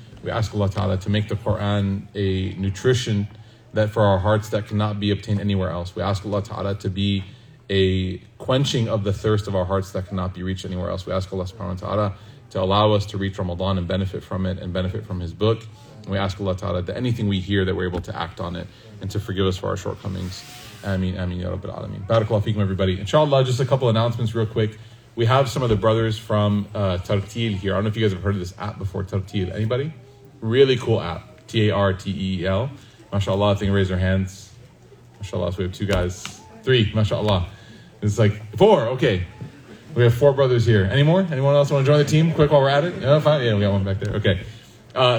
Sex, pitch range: male, 95-115 Hz